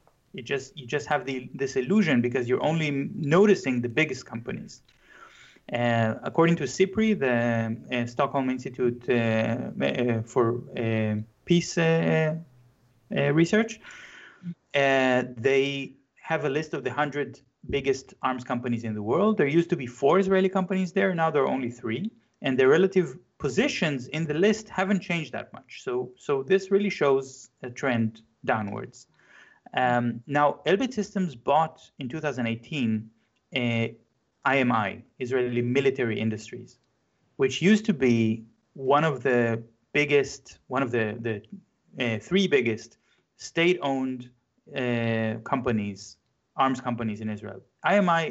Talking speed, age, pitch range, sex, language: 140 wpm, 30-49, 120-165 Hz, male, English